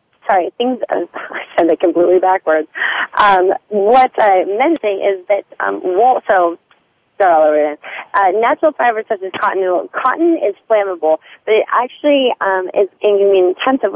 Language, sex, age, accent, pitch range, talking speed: English, female, 30-49, American, 185-275 Hz, 140 wpm